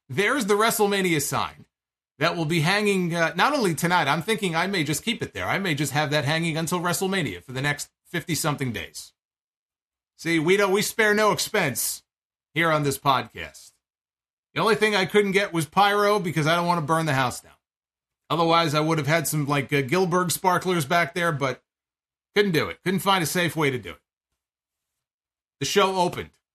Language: English